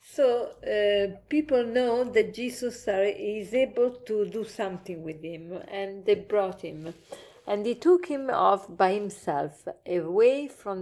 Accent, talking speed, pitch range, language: Italian, 150 wpm, 190-255 Hz, English